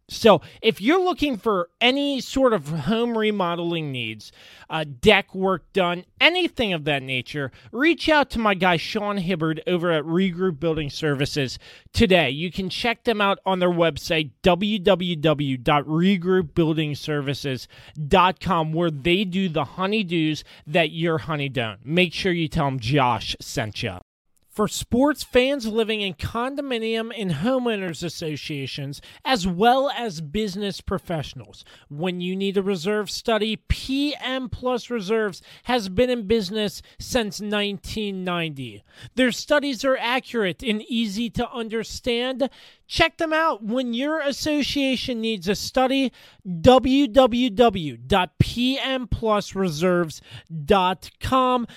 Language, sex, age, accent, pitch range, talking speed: English, male, 30-49, American, 165-250 Hz, 125 wpm